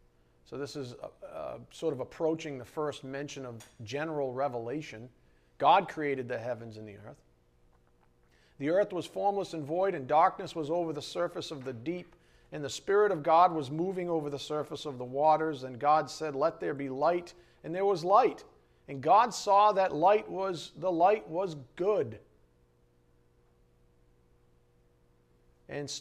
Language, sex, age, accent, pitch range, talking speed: English, male, 40-59, American, 110-175 Hz, 160 wpm